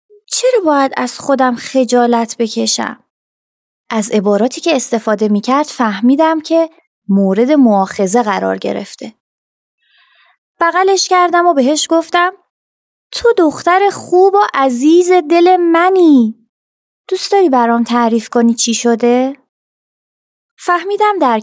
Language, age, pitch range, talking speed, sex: Persian, 30-49, 220-310 Hz, 105 wpm, female